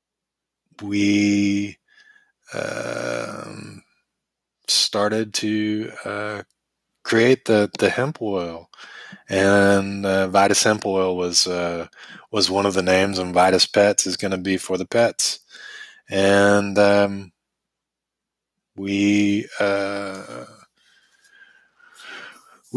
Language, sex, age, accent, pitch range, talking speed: English, male, 20-39, American, 100-125 Hz, 95 wpm